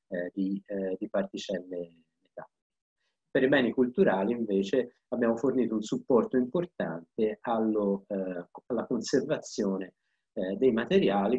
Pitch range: 95-125 Hz